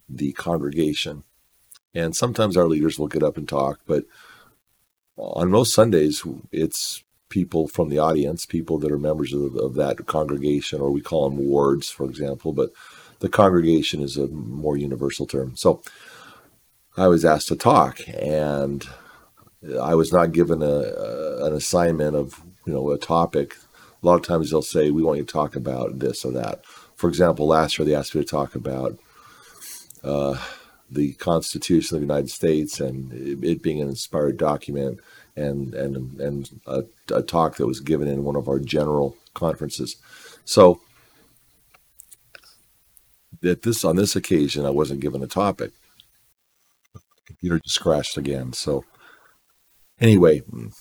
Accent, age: American, 50-69